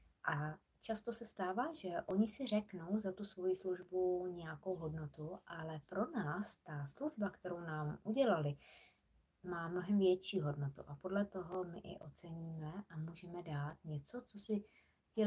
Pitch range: 165-185 Hz